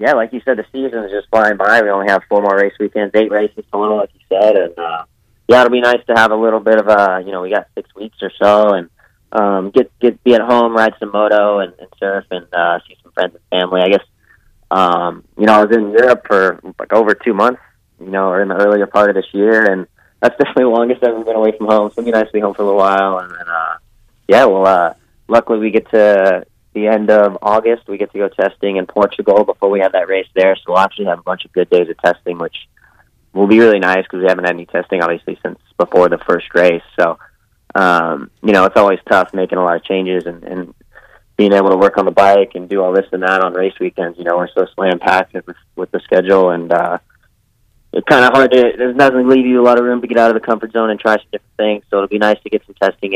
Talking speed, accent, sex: 270 wpm, American, male